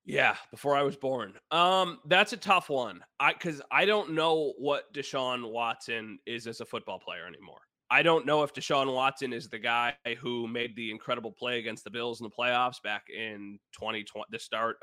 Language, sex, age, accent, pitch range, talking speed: English, male, 20-39, American, 115-145 Hz, 200 wpm